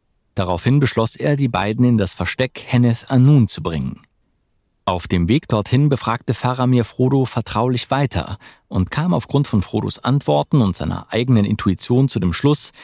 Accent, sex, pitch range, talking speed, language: German, male, 100-135 Hz, 155 wpm, German